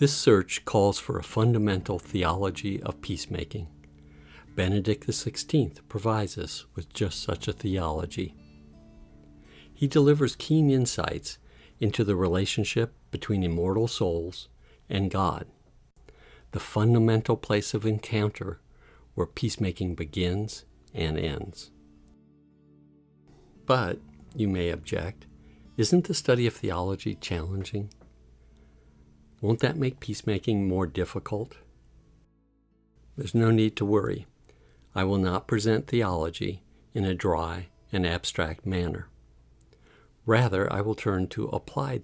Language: English